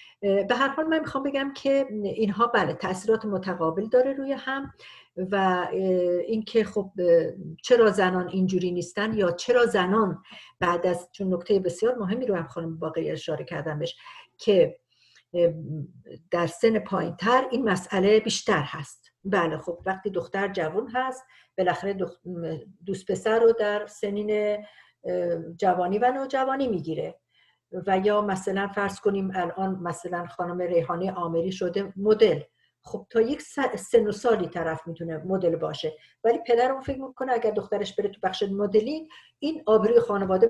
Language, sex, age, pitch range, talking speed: Persian, female, 50-69, 180-235 Hz, 140 wpm